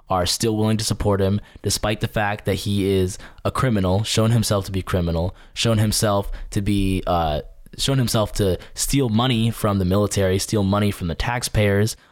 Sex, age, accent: male, 10-29, American